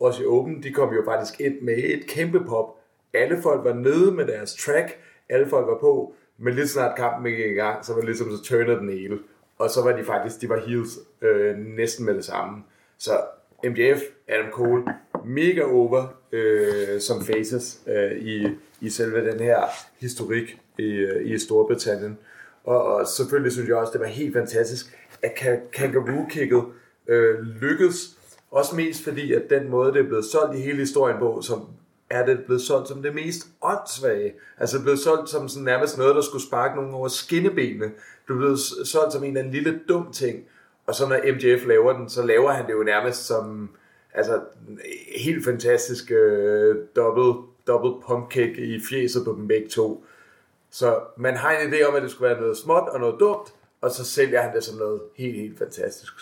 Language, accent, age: Danish, native, 30-49